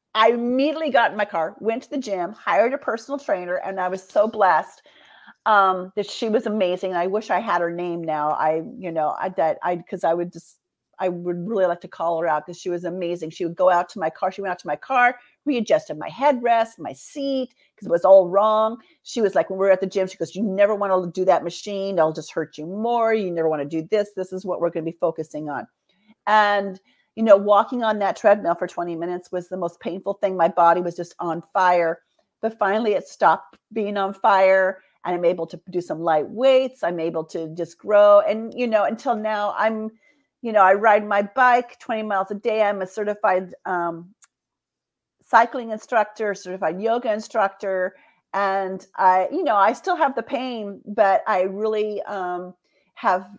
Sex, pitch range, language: female, 175-220 Hz, English